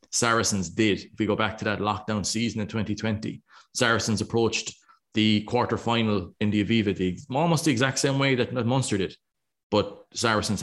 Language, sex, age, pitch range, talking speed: English, male, 30-49, 100-120 Hz, 170 wpm